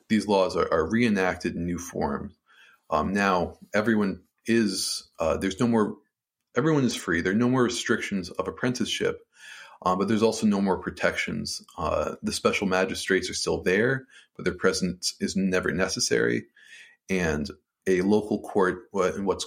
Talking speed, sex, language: 155 wpm, male, English